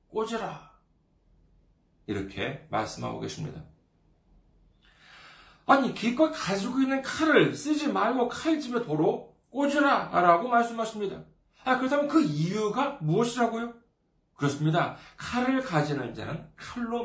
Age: 40-59